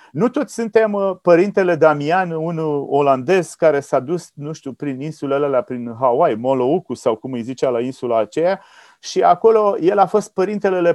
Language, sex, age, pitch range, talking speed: Romanian, male, 30-49, 145-195 Hz, 165 wpm